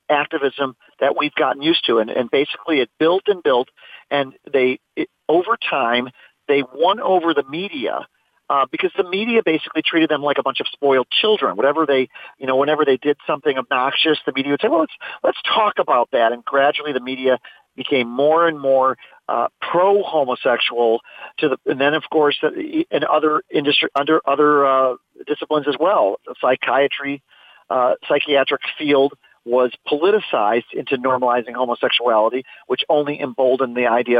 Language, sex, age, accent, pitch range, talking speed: English, male, 40-59, American, 135-165 Hz, 165 wpm